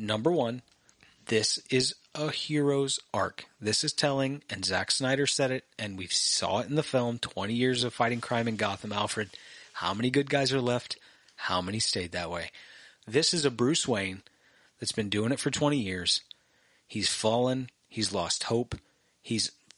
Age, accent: 30-49, American